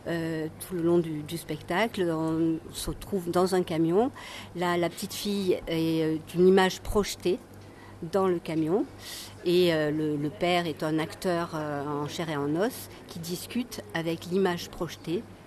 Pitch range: 155-185 Hz